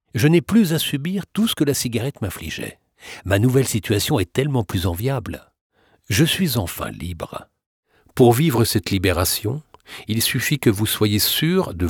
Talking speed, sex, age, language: 165 wpm, male, 60-79, French